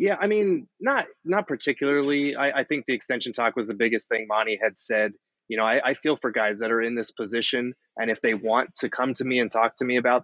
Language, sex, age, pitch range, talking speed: English, male, 20-39, 110-125 Hz, 260 wpm